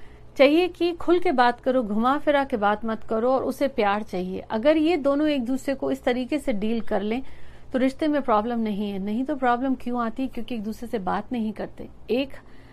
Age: 50-69